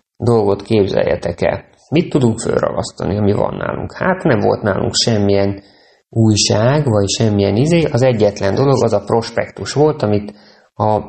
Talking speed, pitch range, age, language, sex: 145 wpm, 100-120 Hz, 20-39, Hungarian, male